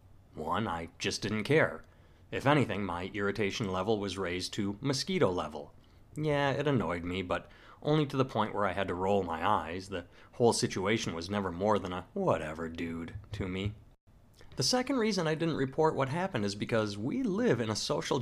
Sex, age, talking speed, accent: male, 30-49, 190 wpm, American